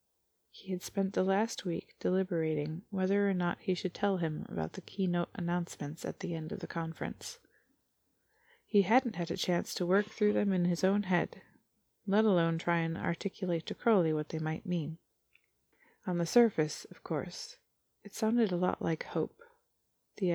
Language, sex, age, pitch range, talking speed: English, female, 20-39, 175-210 Hz, 175 wpm